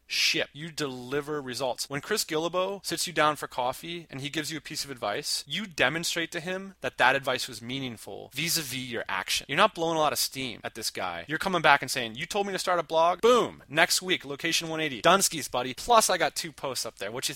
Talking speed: 245 wpm